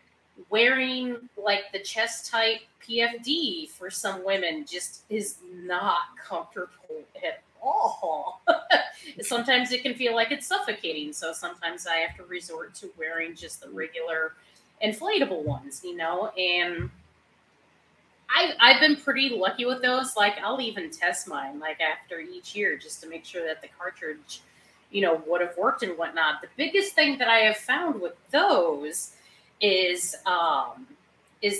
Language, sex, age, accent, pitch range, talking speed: English, female, 30-49, American, 165-245 Hz, 150 wpm